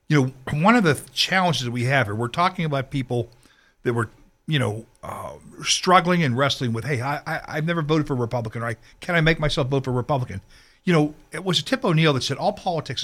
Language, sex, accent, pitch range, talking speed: English, male, American, 130-185 Hz, 235 wpm